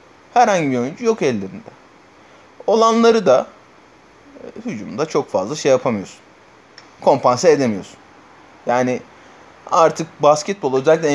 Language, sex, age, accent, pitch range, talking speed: Turkish, male, 30-49, native, 140-170 Hz, 100 wpm